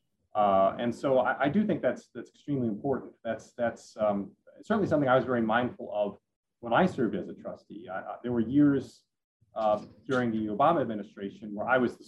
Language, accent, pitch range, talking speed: English, American, 105-130 Hz, 205 wpm